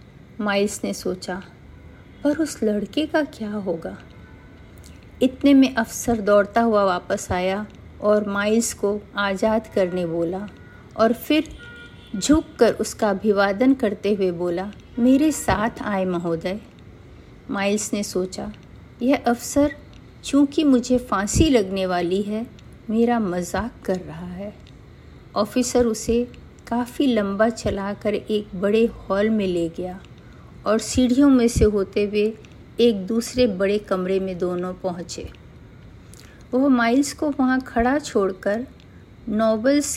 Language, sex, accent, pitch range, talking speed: Hindi, female, native, 195-250 Hz, 120 wpm